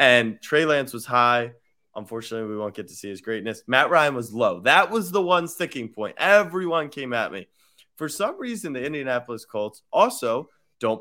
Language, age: English, 20-39